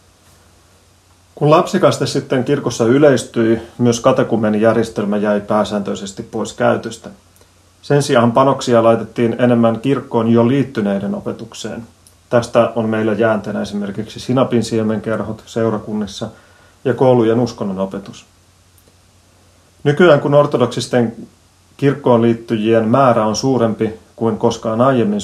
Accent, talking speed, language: native, 100 wpm, Finnish